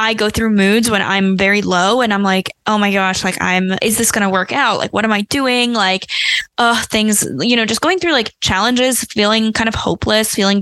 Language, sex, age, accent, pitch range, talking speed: English, female, 10-29, American, 200-240 Hz, 235 wpm